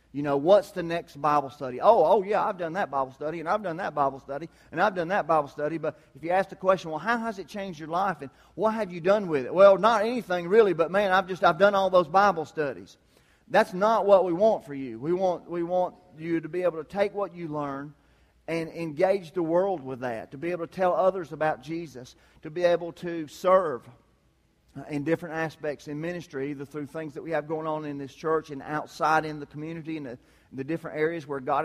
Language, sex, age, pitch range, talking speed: English, male, 40-59, 140-175 Hz, 245 wpm